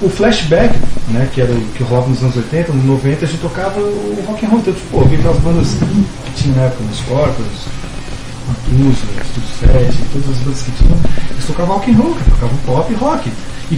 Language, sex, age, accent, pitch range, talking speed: Portuguese, male, 40-59, Brazilian, 130-160 Hz, 215 wpm